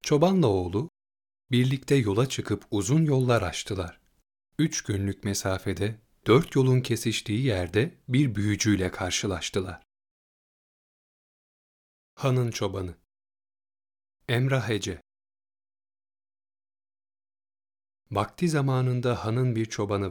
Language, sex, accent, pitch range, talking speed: Turkish, male, native, 100-130 Hz, 80 wpm